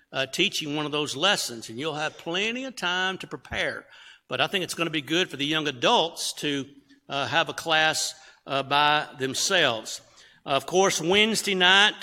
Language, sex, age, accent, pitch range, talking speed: English, male, 60-79, American, 140-180 Hz, 195 wpm